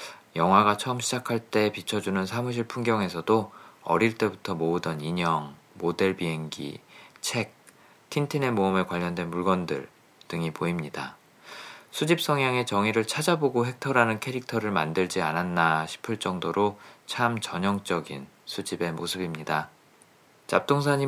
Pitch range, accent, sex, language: 90-120 Hz, native, male, Korean